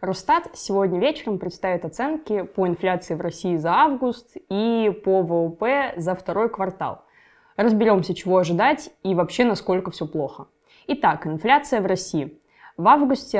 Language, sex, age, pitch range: Russian, female, 20-39, 170-220 Hz